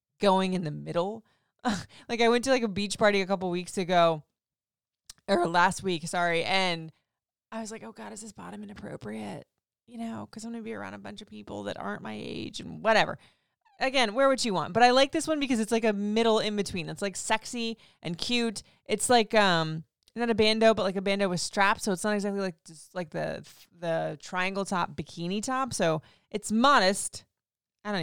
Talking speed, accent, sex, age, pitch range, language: 210 wpm, American, female, 20-39, 170-225 Hz, English